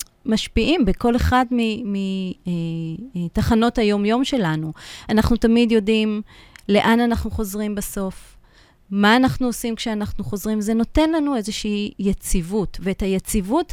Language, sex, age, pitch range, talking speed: Hebrew, female, 30-49, 185-245 Hz, 110 wpm